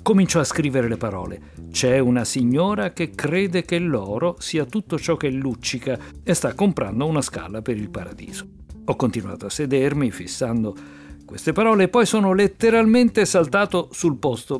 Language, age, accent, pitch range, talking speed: Italian, 50-69, native, 115-170 Hz, 160 wpm